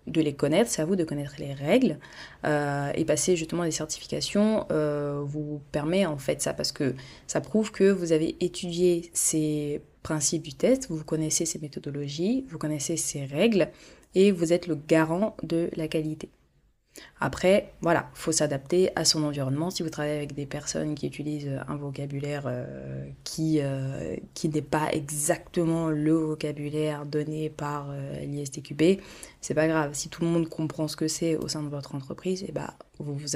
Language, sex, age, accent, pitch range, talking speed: French, female, 20-39, French, 150-175 Hz, 180 wpm